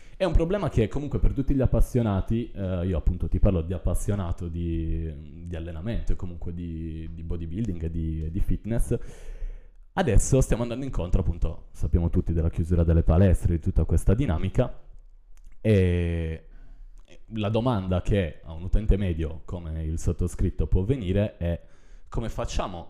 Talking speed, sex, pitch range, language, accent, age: 150 wpm, male, 80-100 Hz, Italian, native, 20-39